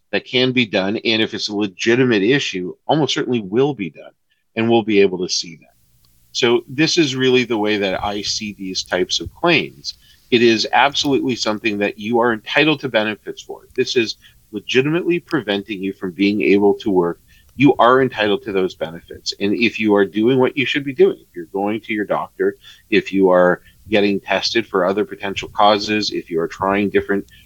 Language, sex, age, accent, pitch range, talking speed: English, male, 40-59, American, 95-115 Hz, 200 wpm